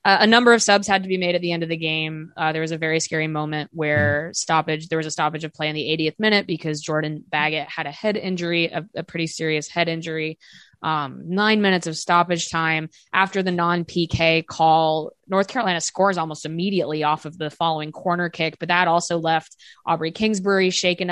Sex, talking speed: female, 215 wpm